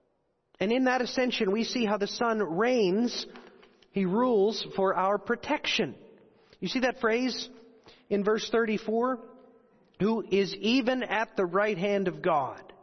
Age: 40-59